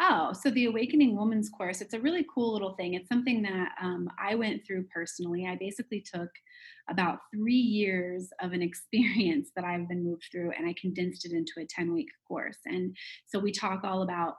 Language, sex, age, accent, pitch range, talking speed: English, female, 30-49, American, 180-210 Hz, 195 wpm